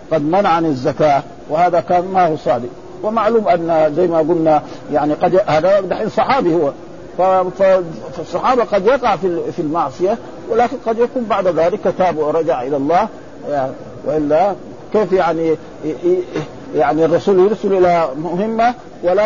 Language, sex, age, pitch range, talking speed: Arabic, male, 50-69, 155-185 Hz, 130 wpm